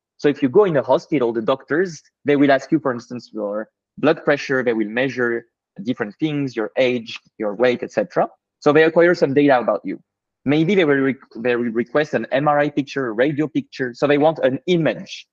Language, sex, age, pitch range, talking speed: English, male, 20-39, 120-150 Hz, 205 wpm